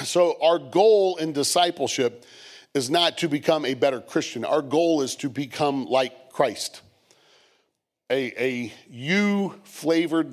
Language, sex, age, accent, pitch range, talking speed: English, male, 40-59, American, 125-155 Hz, 135 wpm